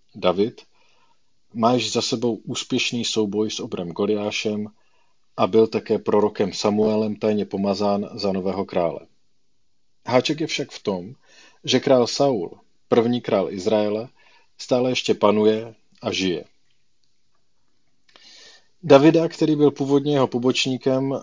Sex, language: male, Czech